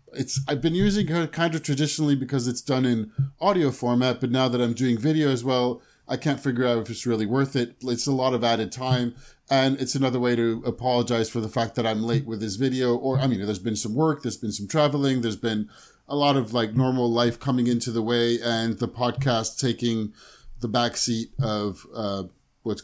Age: 30-49